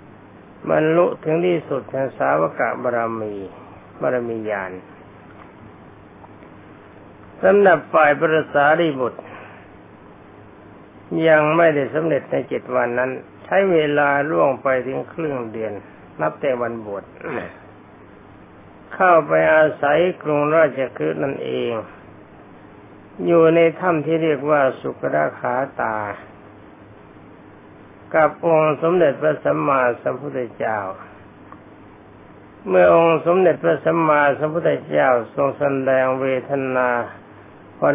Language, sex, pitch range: Thai, male, 105-155 Hz